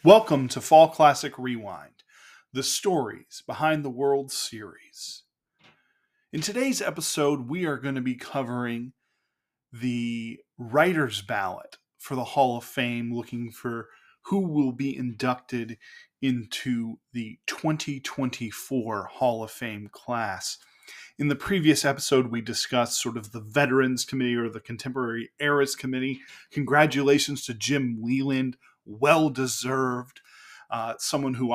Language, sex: English, male